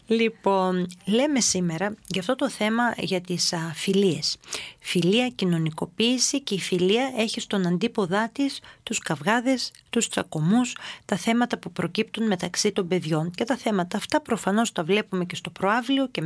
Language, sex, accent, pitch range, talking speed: Greek, female, native, 175-230 Hz, 155 wpm